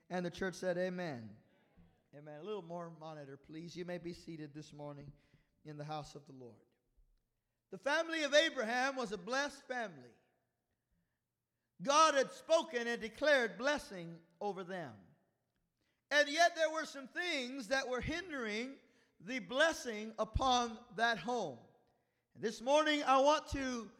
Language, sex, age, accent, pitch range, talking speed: English, male, 50-69, American, 205-290 Hz, 145 wpm